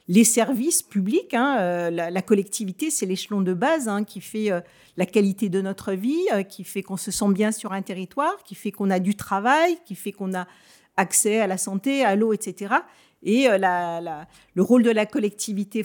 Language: French